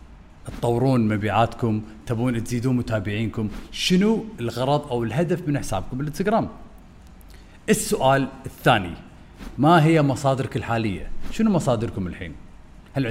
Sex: male